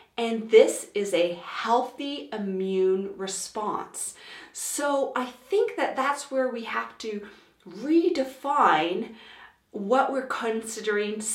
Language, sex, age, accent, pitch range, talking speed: English, female, 40-59, American, 195-275 Hz, 105 wpm